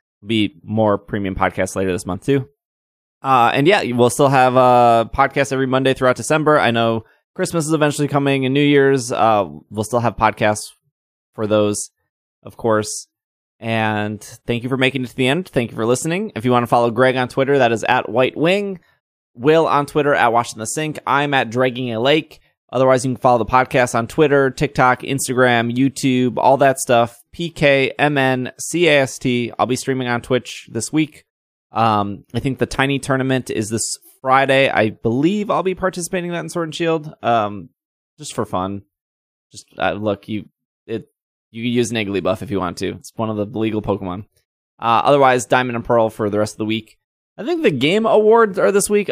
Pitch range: 110-140 Hz